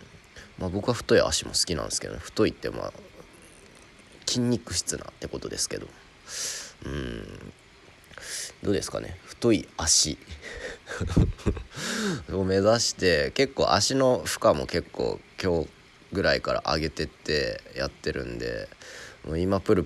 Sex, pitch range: male, 80-95 Hz